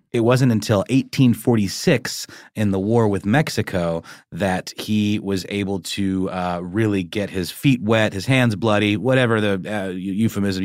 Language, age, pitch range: English, 30-49, 95-120 Hz